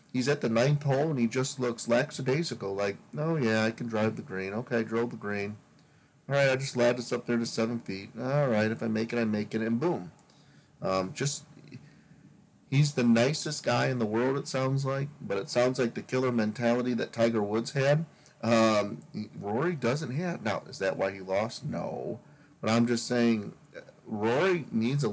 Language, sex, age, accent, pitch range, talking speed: English, male, 40-59, American, 110-125 Hz, 205 wpm